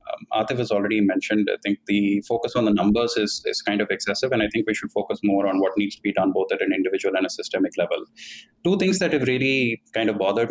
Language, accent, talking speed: English, Indian, 265 wpm